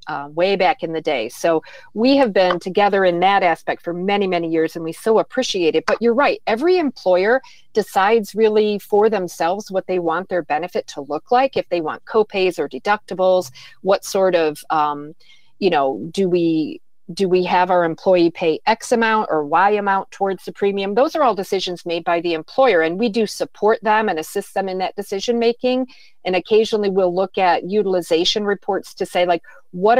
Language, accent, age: English, American, 40-59